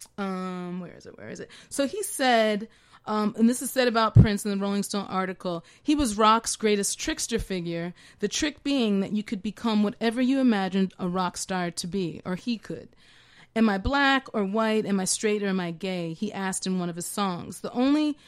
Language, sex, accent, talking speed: English, female, American, 220 wpm